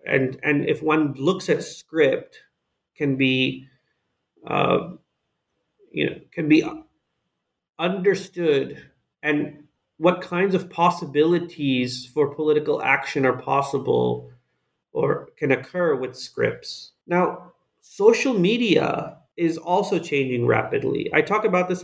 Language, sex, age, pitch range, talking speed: English, male, 30-49, 130-170 Hz, 115 wpm